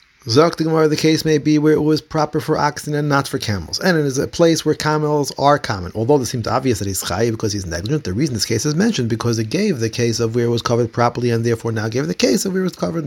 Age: 30-49